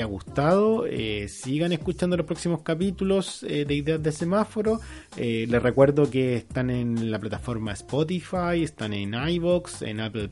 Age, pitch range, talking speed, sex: 30-49, 115-155 Hz, 150 wpm, male